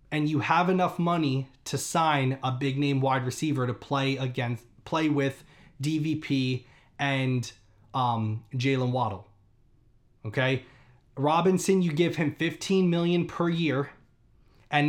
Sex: male